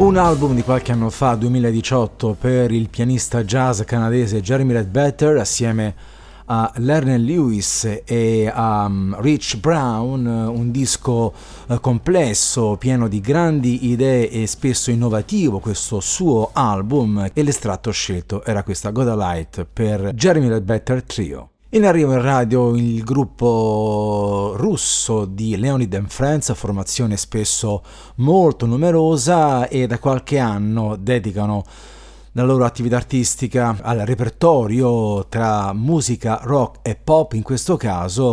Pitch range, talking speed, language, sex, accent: 105-130 Hz, 125 wpm, Italian, male, native